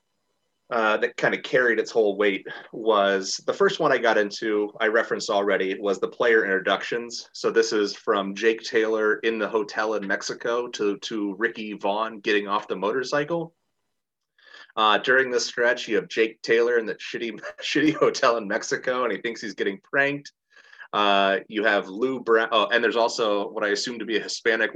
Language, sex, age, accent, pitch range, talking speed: English, male, 30-49, American, 105-145 Hz, 190 wpm